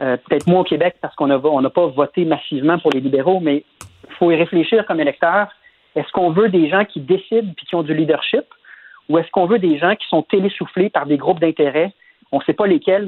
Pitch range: 145-185 Hz